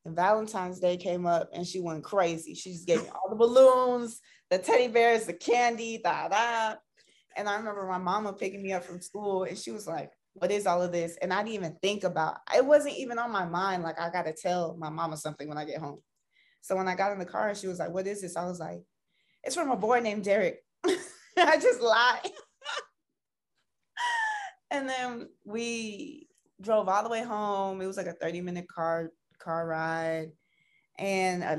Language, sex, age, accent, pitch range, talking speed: English, female, 20-39, American, 170-215 Hz, 205 wpm